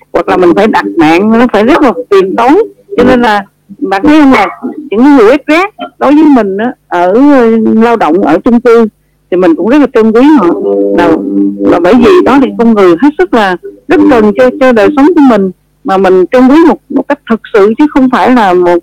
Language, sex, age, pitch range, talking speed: Vietnamese, female, 50-69, 190-290 Hz, 235 wpm